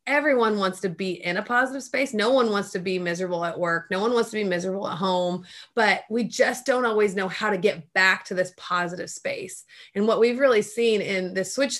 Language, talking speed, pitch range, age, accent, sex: English, 235 wpm, 185-225 Hz, 30-49, American, female